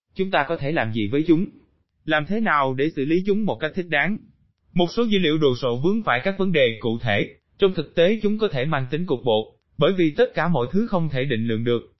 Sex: male